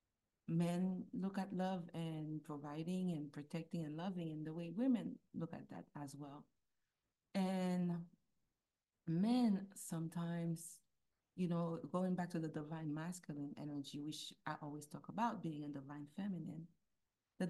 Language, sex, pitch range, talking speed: English, female, 150-185 Hz, 140 wpm